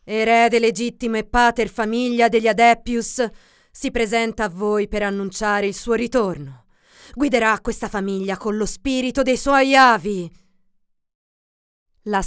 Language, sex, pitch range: Italian, female, 160-235 Hz